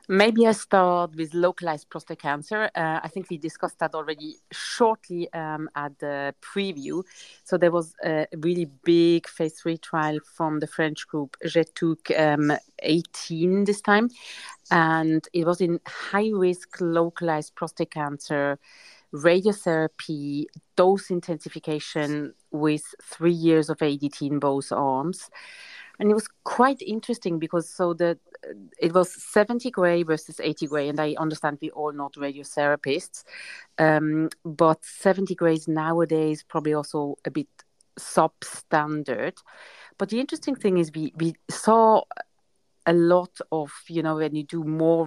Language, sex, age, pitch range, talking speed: English, female, 30-49, 155-180 Hz, 140 wpm